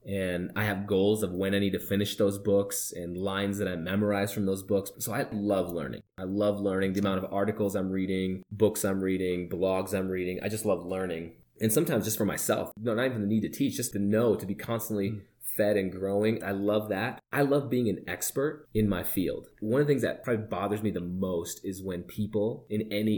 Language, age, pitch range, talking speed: English, 20-39, 95-110 Hz, 230 wpm